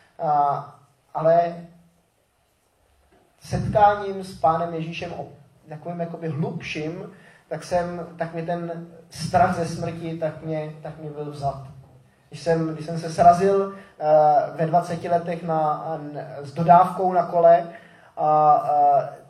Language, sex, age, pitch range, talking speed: Czech, male, 20-39, 155-175 Hz, 135 wpm